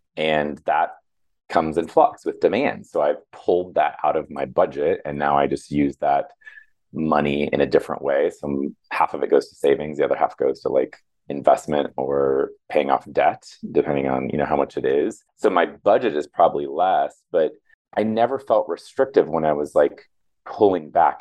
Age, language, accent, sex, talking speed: 30-49, English, American, male, 195 wpm